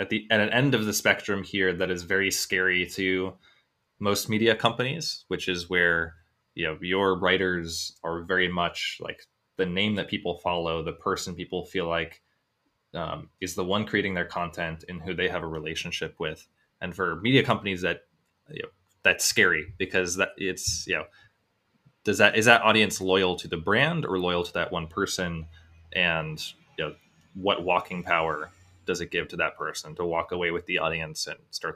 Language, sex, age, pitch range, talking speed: English, male, 20-39, 85-100 Hz, 190 wpm